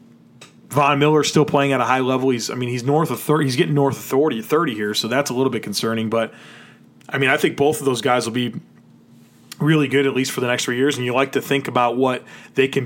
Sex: male